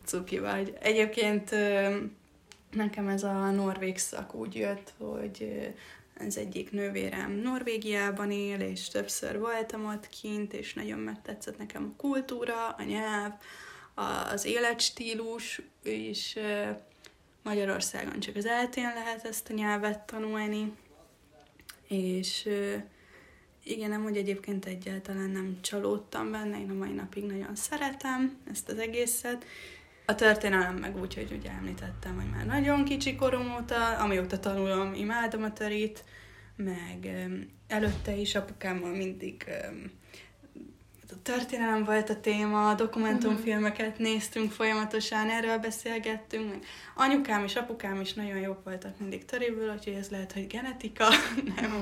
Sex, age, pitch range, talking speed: female, 20-39, 185-225 Hz, 125 wpm